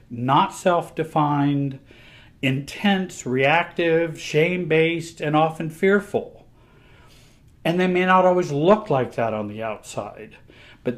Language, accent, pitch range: English, American, 125-165 Hz